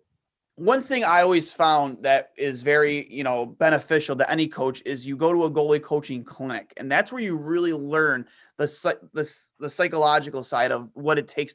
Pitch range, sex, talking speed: 135-165 Hz, male, 190 wpm